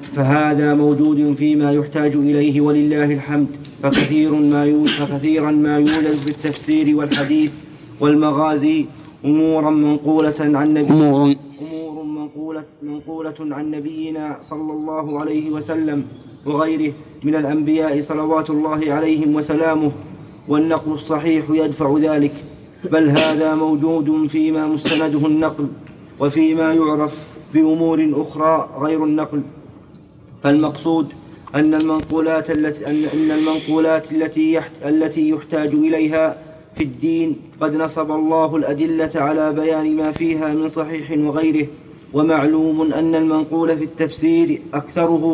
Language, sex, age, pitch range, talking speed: Arabic, male, 20-39, 150-160 Hz, 95 wpm